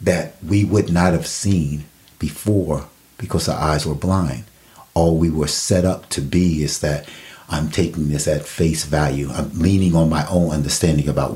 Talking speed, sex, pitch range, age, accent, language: 180 wpm, male, 75-90 Hz, 40-59, American, English